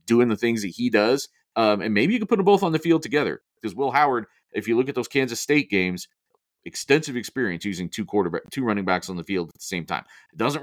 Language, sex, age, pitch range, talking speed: English, male, 40-59, 95-135 Hz, 260 wpm